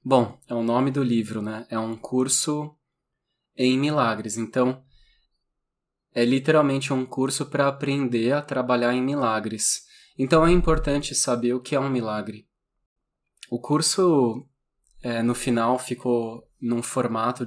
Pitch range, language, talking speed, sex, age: 120-145 Hz, Portuguese, 135 wpm, male, 20-39